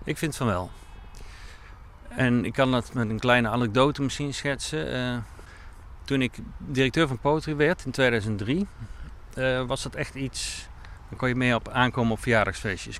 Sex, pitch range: male, 110-145 Hz